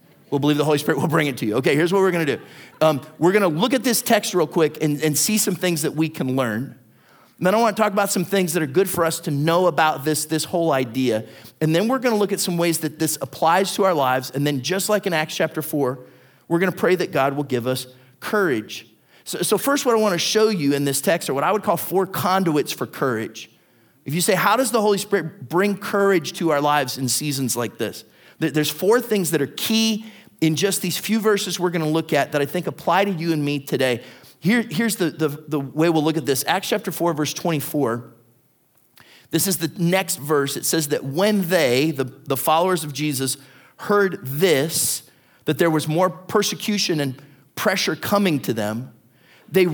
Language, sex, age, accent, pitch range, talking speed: English, male, 30-49, American, 140-190 Hz, 225 wpm